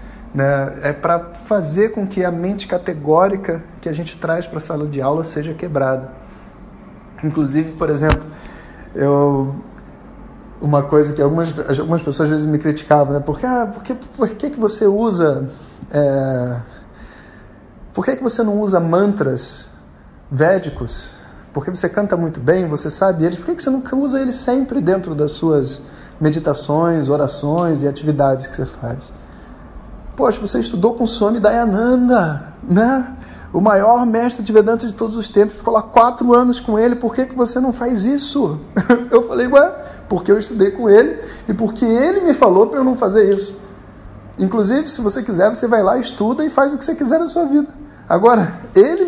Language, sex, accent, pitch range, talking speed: Portuguese, male, Brazilian, 150-235 Hz, 170 wpm